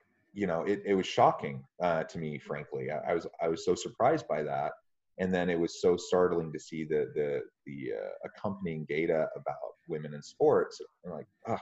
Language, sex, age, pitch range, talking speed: English, male, 30-49, 75-100 Hz, 195 wpm